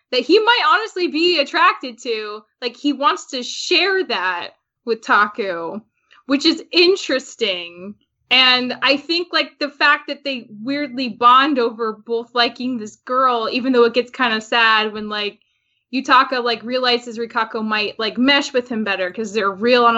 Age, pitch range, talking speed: 10-29, 220-270 Hz, 170 wpm